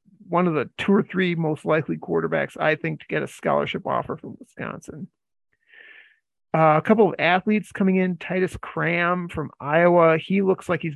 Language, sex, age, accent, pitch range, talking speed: English, male, 40-59, American, 155-185 Hz, 180 wpm